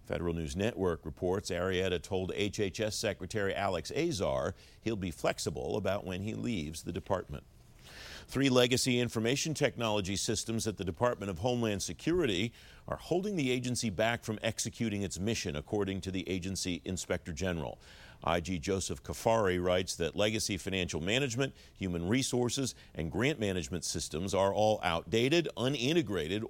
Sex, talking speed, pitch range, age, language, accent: male, 145 wpm, 90-115 Hz, 50-69, English, American